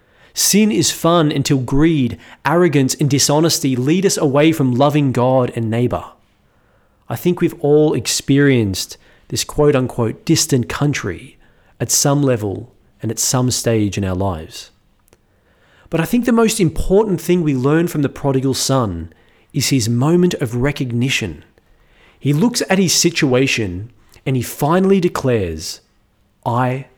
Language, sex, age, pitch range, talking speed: English, male, 30-49, 115-155 Hz, 140 wpm